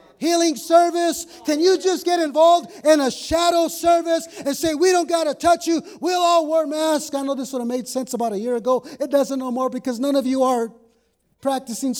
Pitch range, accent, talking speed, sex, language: 250-310 Hz, American, 220 wpm, male, English